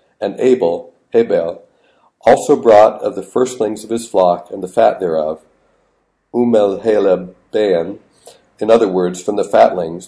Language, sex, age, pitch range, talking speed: English, male, 50-69, 90-145 Hz, 145 wpm